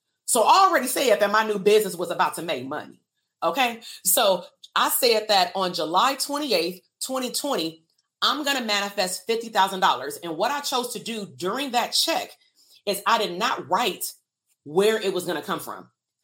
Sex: female